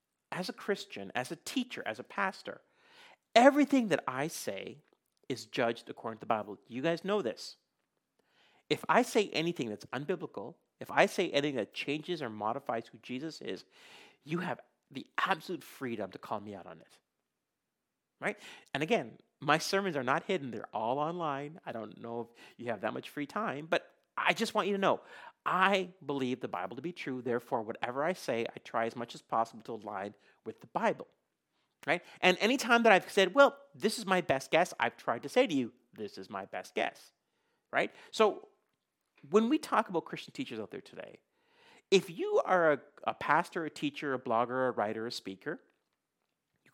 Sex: male